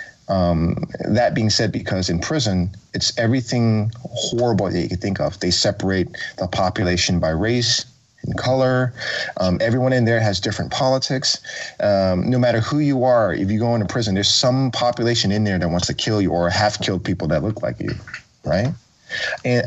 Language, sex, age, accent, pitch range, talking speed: English, male, 30-49, American, 95-120 Hz, 185 wpm